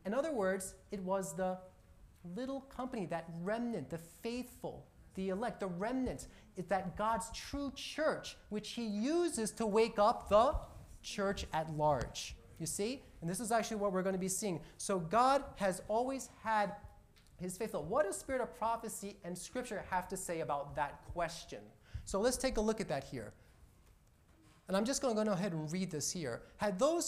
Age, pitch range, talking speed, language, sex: 30-49, 165-225 Hz, 185 wpm, English, male